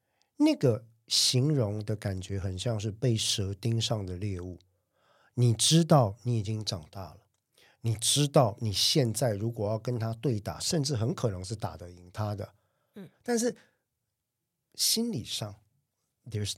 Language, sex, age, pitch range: Chinese, male, 50-69, 105-135 Hz